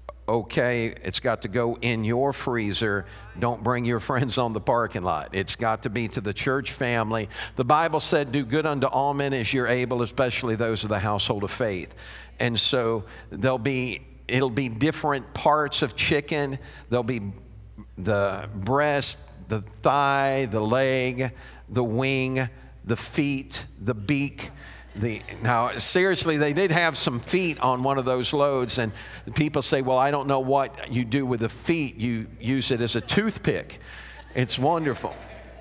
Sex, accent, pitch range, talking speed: male, American, 110-140 Hz, 170 wpm